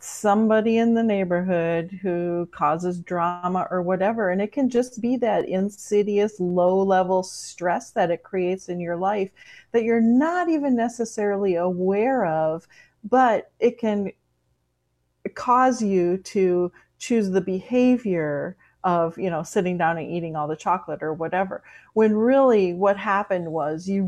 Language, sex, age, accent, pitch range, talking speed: English, female, 40-59, American, 175-220 Hz, 145 wpm